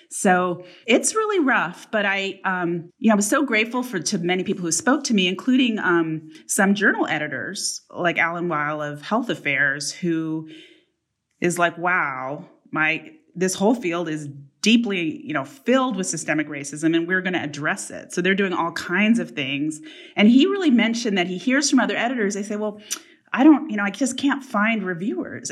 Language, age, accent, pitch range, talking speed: English, 30-49, American, 170-245 Hz, 195 wpm